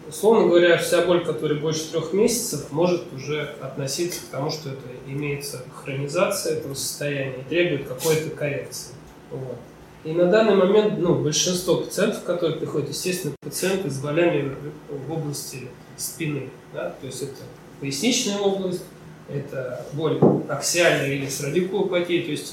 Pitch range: 140-175 Hz